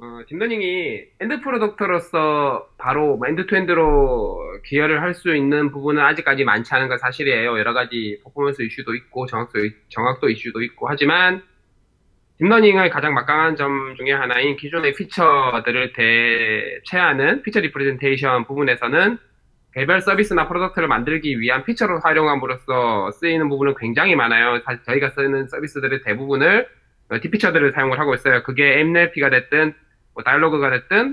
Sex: male